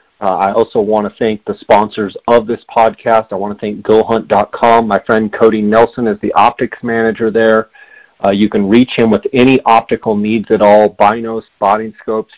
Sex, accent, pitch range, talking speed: male, American, 105-115 Hz, 190 wpm